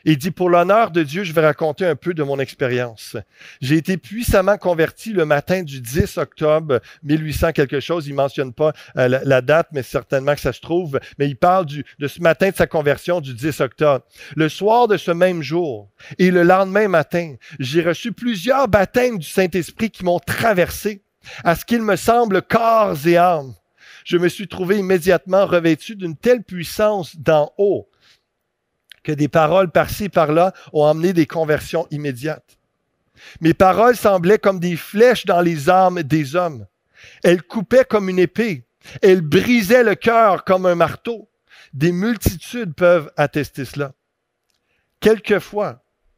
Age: 50-69